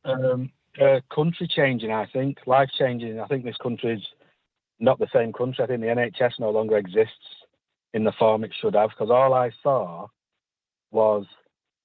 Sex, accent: male, British